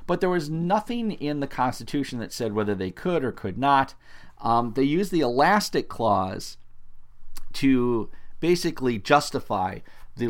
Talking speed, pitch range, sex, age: 145 wpm, 100-145 Hz, male, 40-59